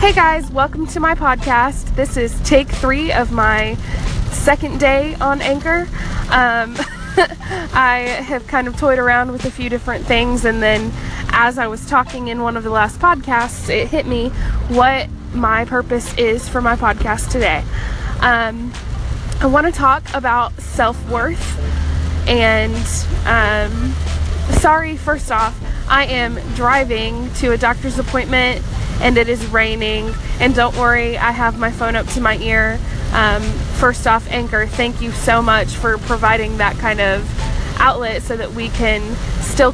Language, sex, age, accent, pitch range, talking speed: English, female, 20-39, American, 220-260 Hz, 155 wpm